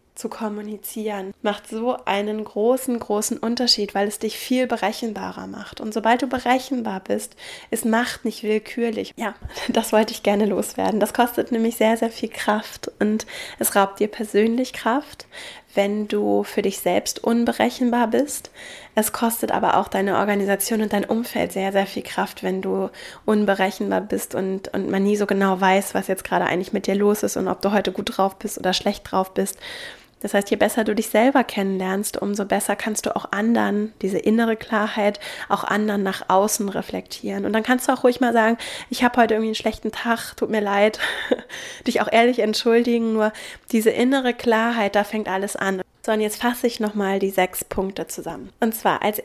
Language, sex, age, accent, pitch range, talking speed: German, female, 10-29, German, 200-235 Hz, 190 wpm